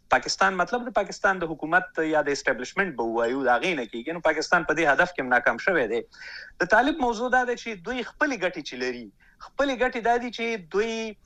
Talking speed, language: 230 wpm, Urdu